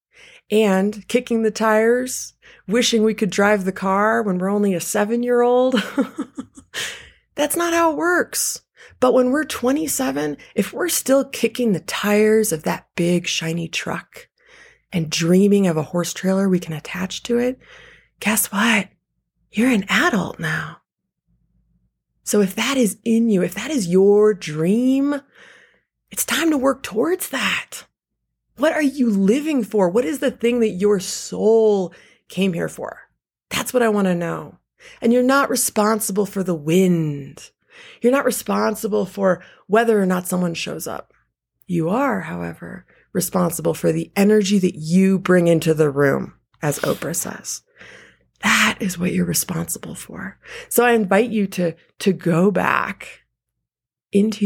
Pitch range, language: 180-245 Hz, English